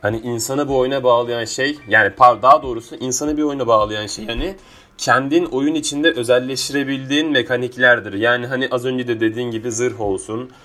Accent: native